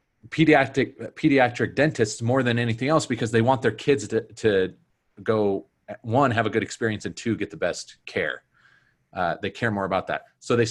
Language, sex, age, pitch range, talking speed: English, male, 30-49, 115-145 Hz, 190 wpm